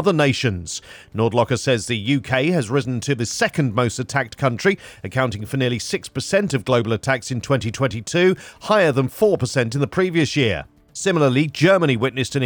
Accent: British